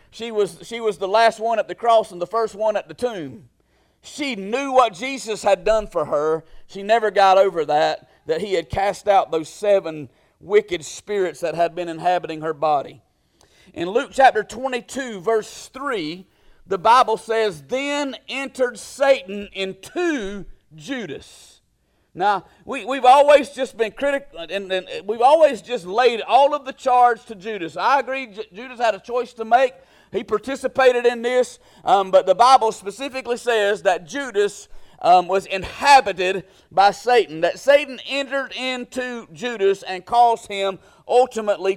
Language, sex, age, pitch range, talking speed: English, male, 40-59, 185-245 Hz, 155 wpm